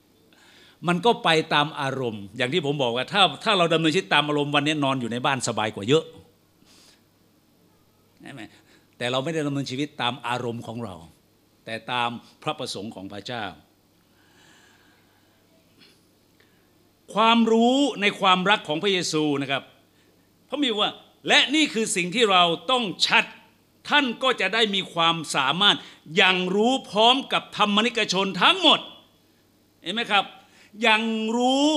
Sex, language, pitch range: male, Thai, 160-240 Hz